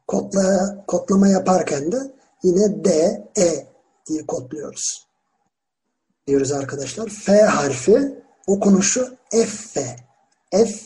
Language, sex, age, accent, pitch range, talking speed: Turkish, male, 50-69, native, 160-230 Hz, 95 wpm